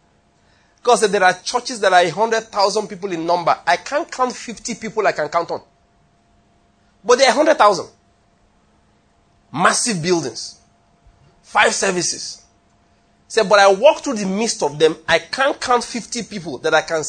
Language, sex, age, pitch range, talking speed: English, male, 30-49, 175-250 Hz, 170 wpm